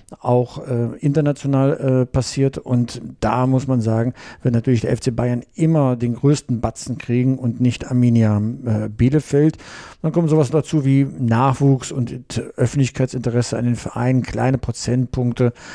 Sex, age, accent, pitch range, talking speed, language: male, 50-69, German, 120-150 Hz, 145 wpm, German